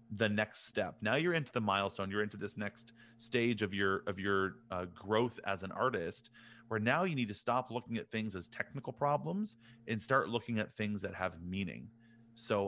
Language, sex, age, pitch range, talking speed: English, male, 30-49, 100-120 Hz, 205 wpm